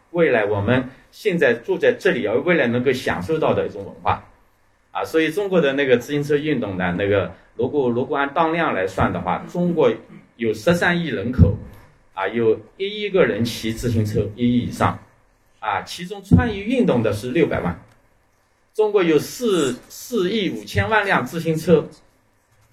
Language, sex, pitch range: Chinese, male, 120-195 Hz